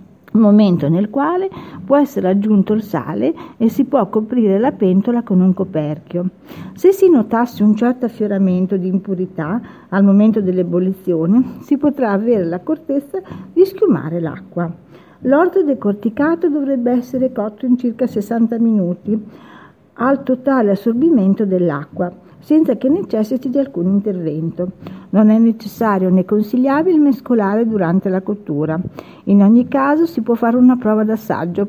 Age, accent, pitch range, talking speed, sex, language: 50-69, native, 185-260 Hz, 140 wpm, female, Italian